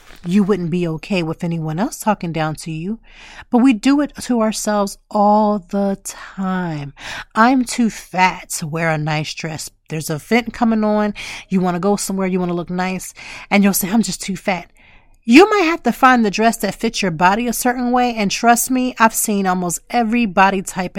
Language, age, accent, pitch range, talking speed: English, 30-49, American, 175-230 Hz, 210 wpm